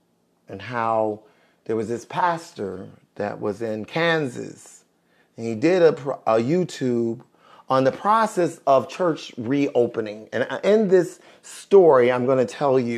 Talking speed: 140 wpm